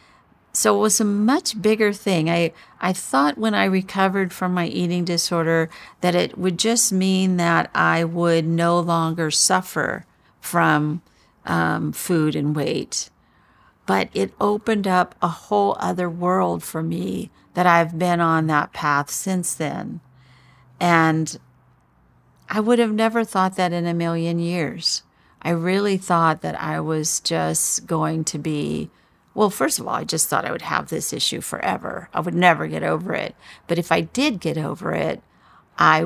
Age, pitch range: 50-69, 155-185 Hz